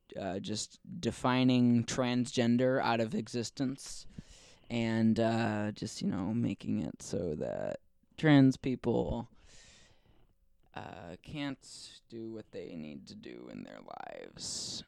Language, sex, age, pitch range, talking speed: English, male, 20-39, 115-145 Hz, 115 wpm